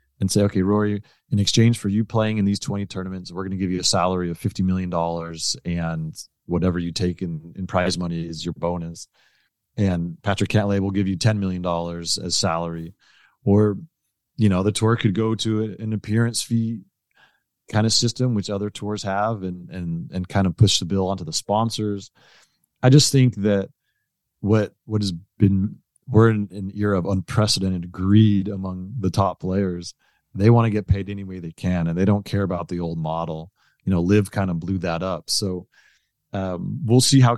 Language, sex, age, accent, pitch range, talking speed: English, male, 30-49, American, 90-105 Hz, 195 wpm